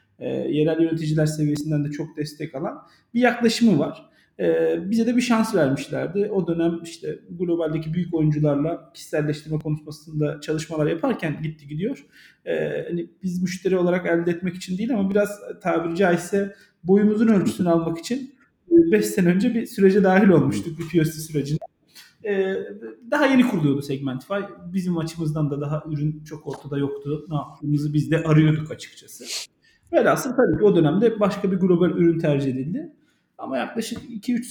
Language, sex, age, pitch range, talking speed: Turkish, male, 40-59, 150-195 Hz, 150 wpm